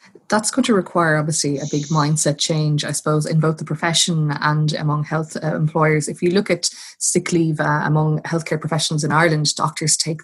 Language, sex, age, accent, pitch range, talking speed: English, female, 20-39, Irish, 150-170 Hz, 200 wpm